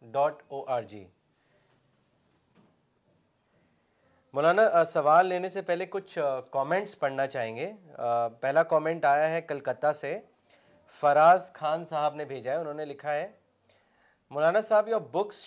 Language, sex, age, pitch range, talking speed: Urdu, male, 30-49, 150-190 Hz, 115 wpm